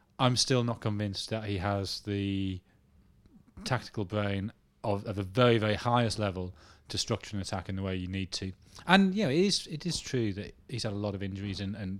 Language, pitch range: English, 100-125 Hz